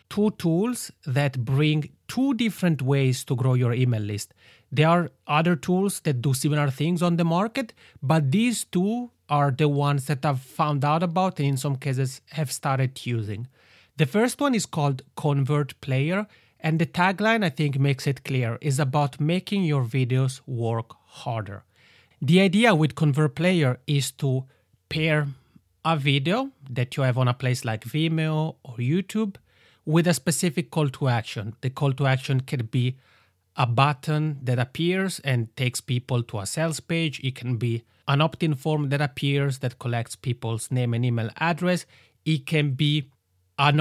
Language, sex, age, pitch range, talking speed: English, male, 30-49, 125-160 Hz, 170 wpm